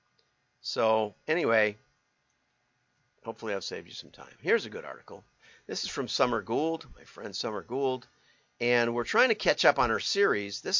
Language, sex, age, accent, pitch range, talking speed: English, male, 50-69, American, 115-140 Hz, 170 wpm